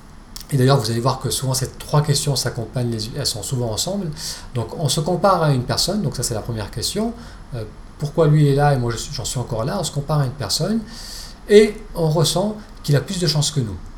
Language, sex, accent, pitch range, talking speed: French, male, French, 120-165 Hz, 235 wpm